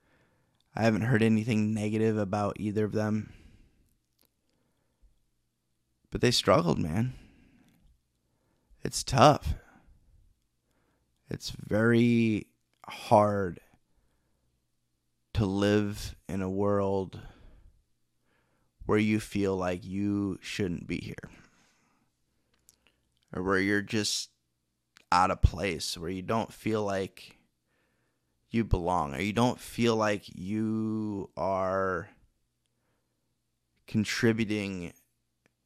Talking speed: 90 wpm